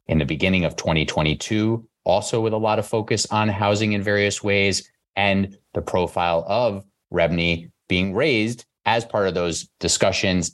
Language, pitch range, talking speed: English, 85-110 Hz, 160 wpm